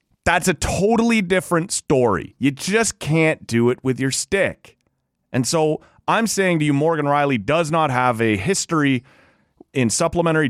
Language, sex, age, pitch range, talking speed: English, male, 30-49, 115-160 Hz, 160 wpm